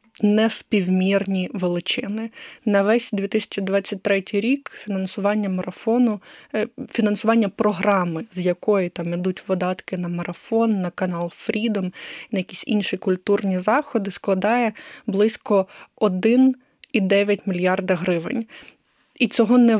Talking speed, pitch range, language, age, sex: 100 wpm, 185-220 Hz, Ukrainian, 20-39, female